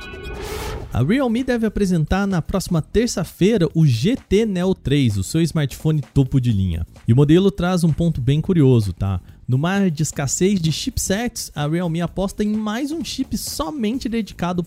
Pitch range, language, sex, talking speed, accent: 135-185 Hz, Portuguese, male, 170 wpm, Brazilian